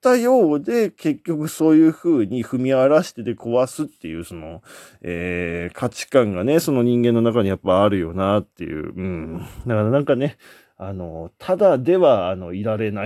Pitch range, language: 95-150 Hz, Japanese